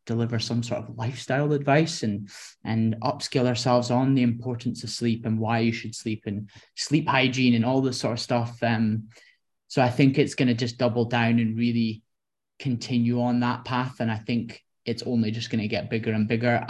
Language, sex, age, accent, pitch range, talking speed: English, male, 20-39, British, 115-130 Hz, 200 wpm